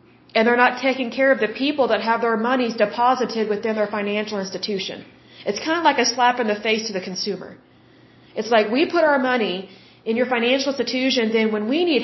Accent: American